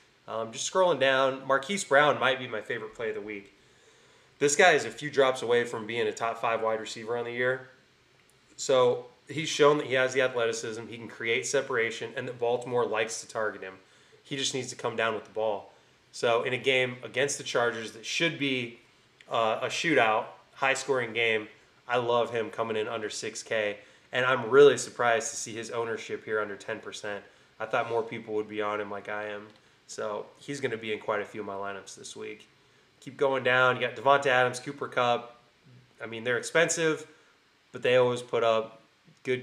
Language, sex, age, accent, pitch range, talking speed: English, male, 20-39, American, 110-140 Hz, 205 wpm